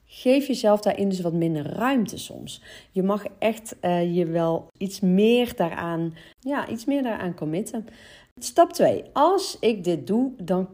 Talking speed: 145 wpm